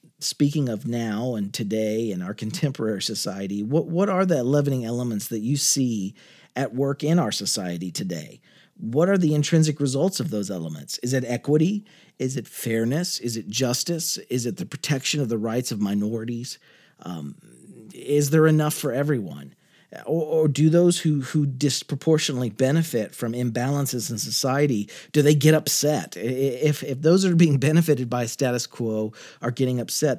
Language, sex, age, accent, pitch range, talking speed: English, male, 40-59, American, 120-155 Hz, 170 wpm